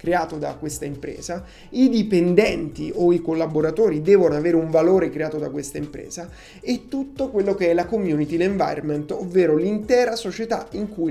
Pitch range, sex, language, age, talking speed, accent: 155-195 Hz, male, Italian, 30-49, 160 wpm, native